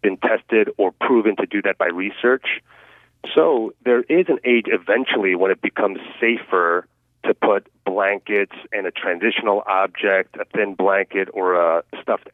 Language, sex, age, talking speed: English, male, 30-49, 155 wpm